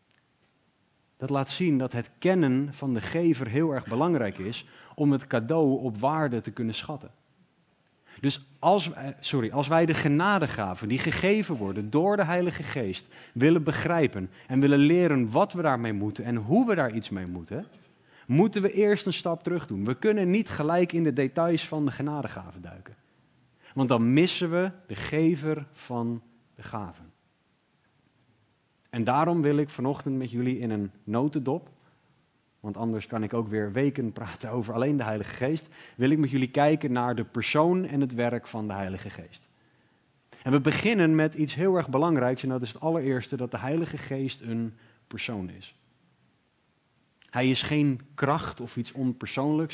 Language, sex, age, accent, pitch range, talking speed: Dutch, male, 40-59, Dutch, 115-155 Hz, 170 wpm